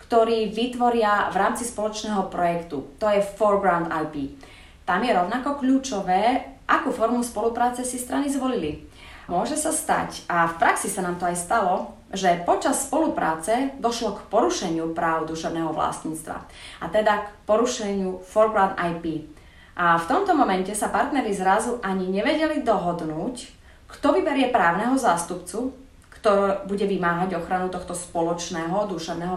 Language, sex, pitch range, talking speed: Slovak, female, 175-240 Hz, 135 wpm